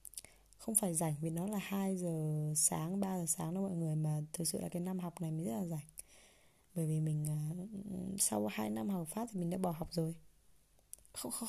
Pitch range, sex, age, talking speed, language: 160-200 Hz, female, 20-39, 220 wpm, Vietnamese